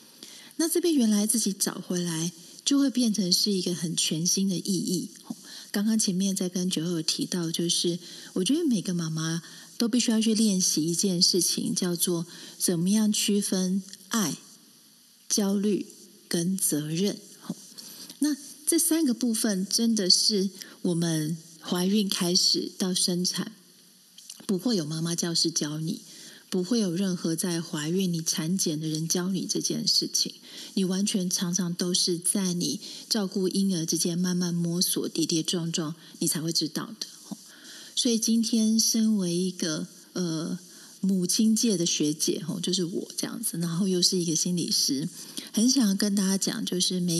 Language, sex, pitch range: Chinese, female, 175-225 Hz